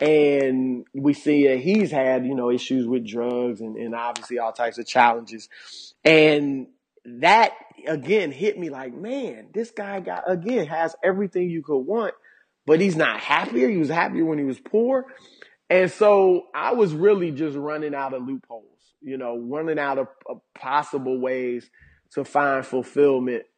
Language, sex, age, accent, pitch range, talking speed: English, male, 30-49, American, 125-155 Hz, 170 wpm